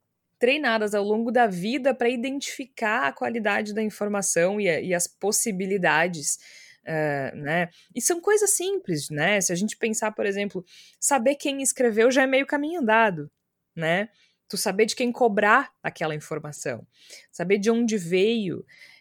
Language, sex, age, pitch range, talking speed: Portuguese, female, 20-39, 195-245 Hz, 155 wpm